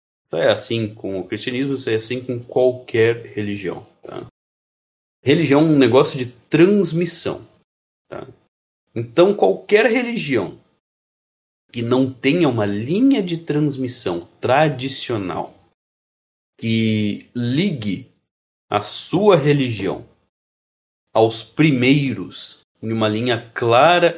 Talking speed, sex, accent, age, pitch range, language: 100 wpm, male, Brazilian, 30-49, 115-175 Hz, Portuguese